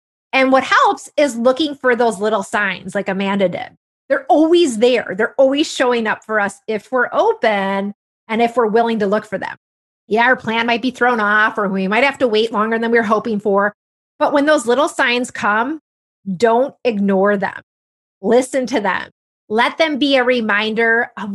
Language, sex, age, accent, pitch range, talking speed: English, female, 30-49, American, 205-260 Hz, 195 wpm